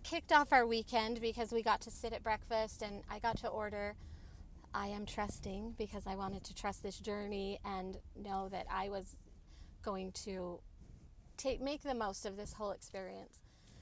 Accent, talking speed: American, 180 wpm